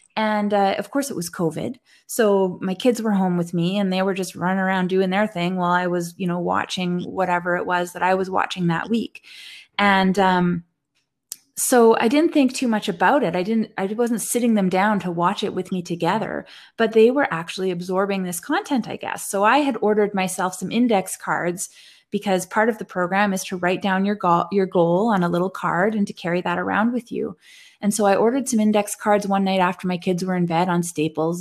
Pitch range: 180-240 Hz